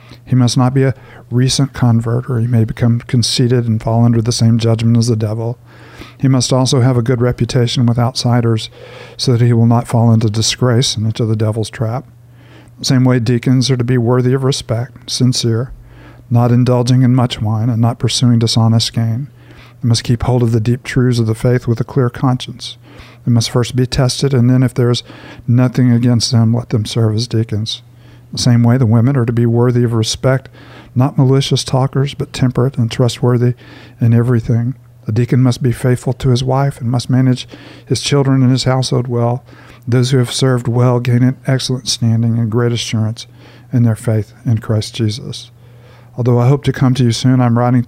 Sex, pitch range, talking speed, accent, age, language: male, 120-130 Hz, 205 wpm, American, 50-69, English